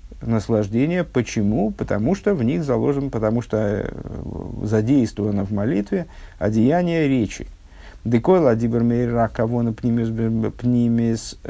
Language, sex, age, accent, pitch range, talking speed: Russian, male, 50-69, native, 100-120 Hz, 95 wpm